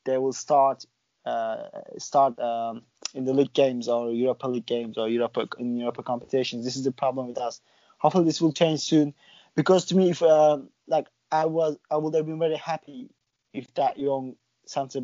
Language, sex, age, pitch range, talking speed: English, male, 20-39, 125-150 Hz, 190 wpm